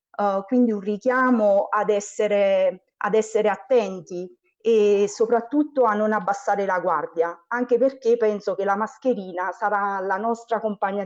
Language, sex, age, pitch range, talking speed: Italian, female, 30-49, 195-235 Hz, 140 wpm